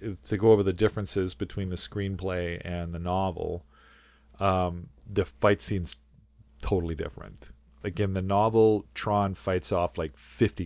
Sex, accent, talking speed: male, American, 145 wpm